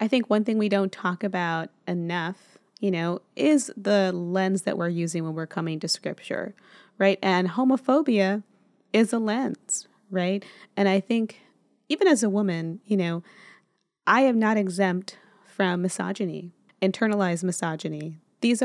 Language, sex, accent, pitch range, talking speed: English, female, American, 180-220 Hz, 150 wpm